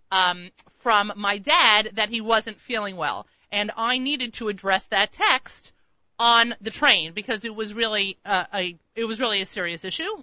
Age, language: 30-49, English